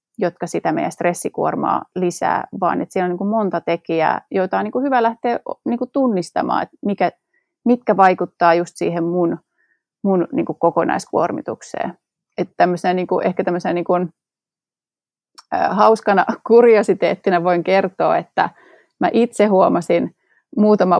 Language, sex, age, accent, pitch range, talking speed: Finnish, female, 30-49, native, 175-240 Hz, 145 wpm